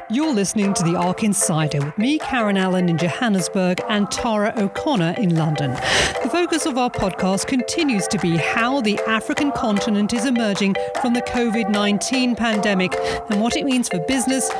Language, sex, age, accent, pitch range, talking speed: English, female, 40-59, British, 180-250 Hz, 170 wpm